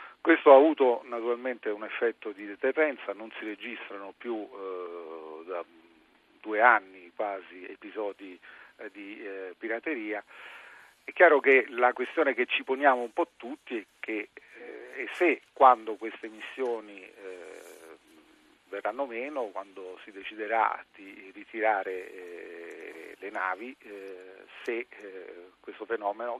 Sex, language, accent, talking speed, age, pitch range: male, Italian, native, 130 wpm, 40-59, 95-155 Hz